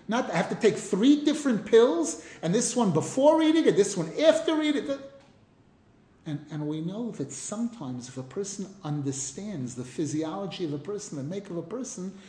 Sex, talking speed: male, 190 wpm